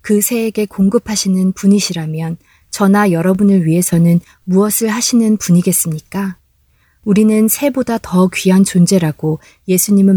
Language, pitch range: Korean, 170-210 Hz